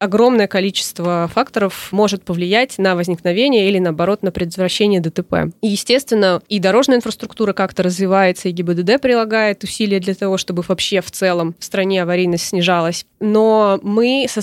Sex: female